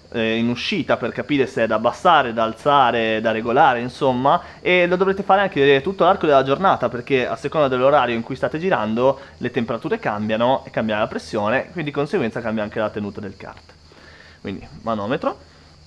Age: 20-39